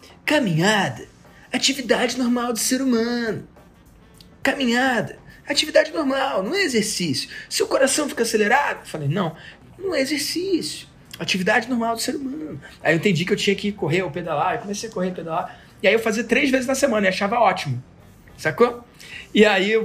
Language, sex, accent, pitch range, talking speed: Portuguese, male, Brazilian, 200-260 Hz, 180 wpm